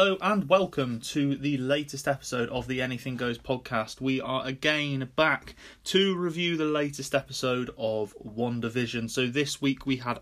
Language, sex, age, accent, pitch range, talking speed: English, male, 30-49, British, 120-145 Hz, 165 wpm